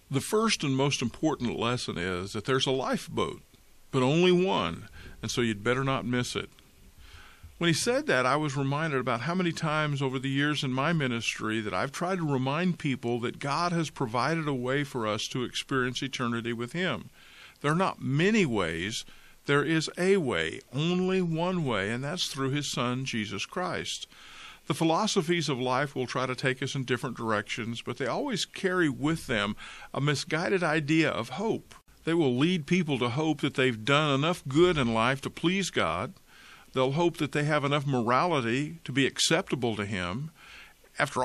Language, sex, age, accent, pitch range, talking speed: English, male, 50-69, American, 125-165 Hz, 185 wpm